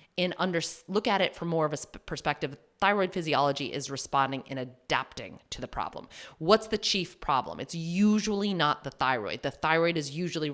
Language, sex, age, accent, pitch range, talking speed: English, female, 30-49, American, 140-180 Hz, 180 wpm